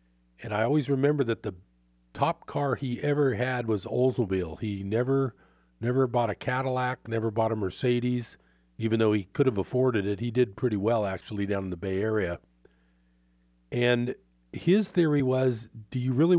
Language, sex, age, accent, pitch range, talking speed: English, male, 40-59, American, 95-130 Hz, 170 wpm